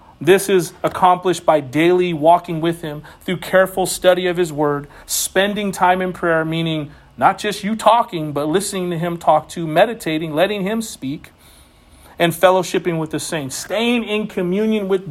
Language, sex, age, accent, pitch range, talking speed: English, male, 40-59, American, 155-195 Hz, 165 wpm